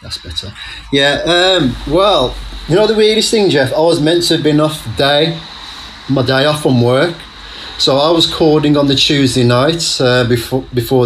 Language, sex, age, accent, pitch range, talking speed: English, male, 30-49, British, 115-155 Hz, 195 wpm